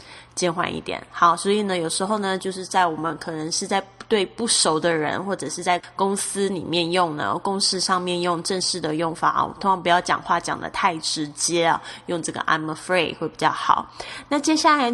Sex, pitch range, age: female, 175-215 Hz, 10-29